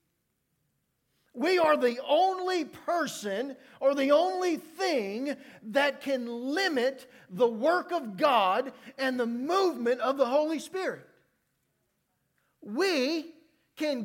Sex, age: male, 50-69